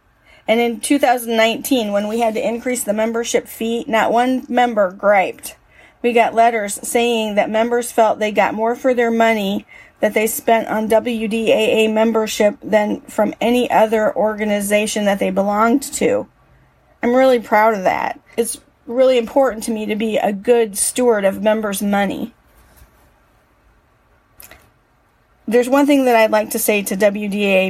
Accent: American